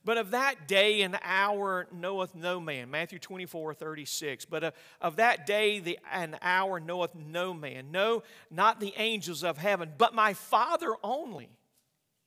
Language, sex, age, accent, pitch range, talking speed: English, male, 50-69, American, 130-175 Hz, 150 wpm